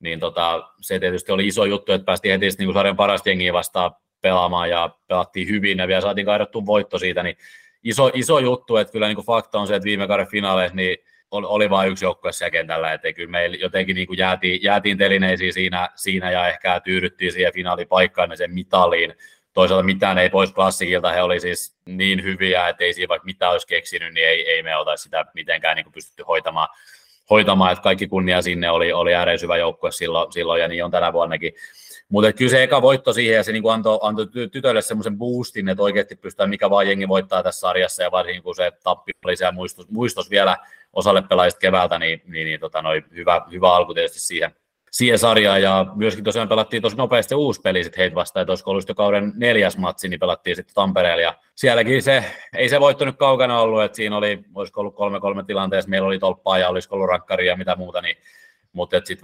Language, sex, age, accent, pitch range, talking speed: Finnish, male, 20-39, native, 95-120 Hz, 205 wpm